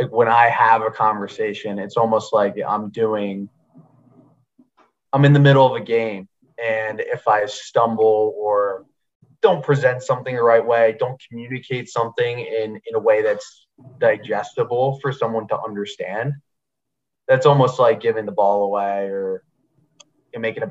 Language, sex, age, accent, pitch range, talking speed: English, male, 20-39, American, 110-145 Hz, 150 wpm